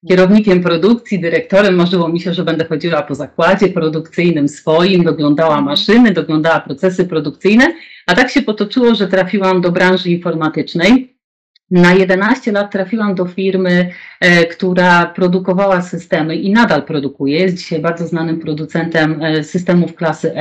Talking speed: 135 wpm